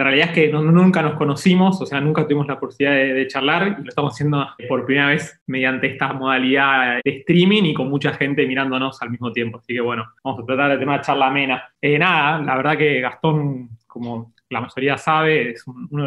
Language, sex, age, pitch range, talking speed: Portuguese, male, 20-39, 130-155 Hz, 220 wpm